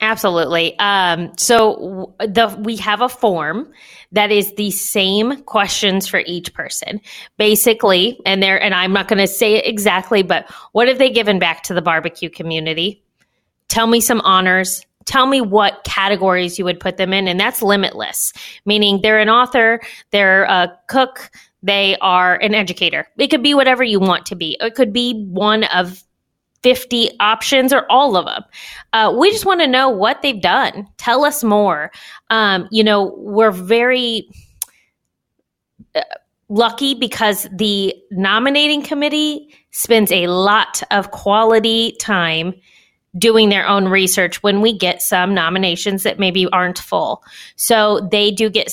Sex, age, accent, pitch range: female, 20-39, American, 185-230 Hz